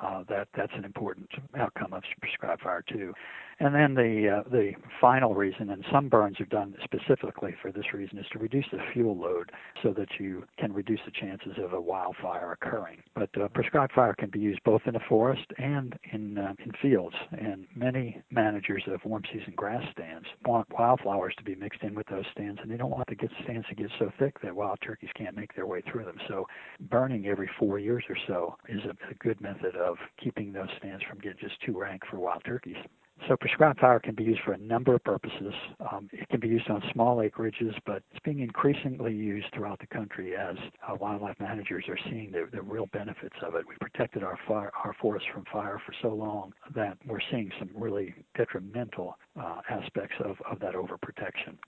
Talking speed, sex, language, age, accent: 210 wpm, male, English, 60-79, American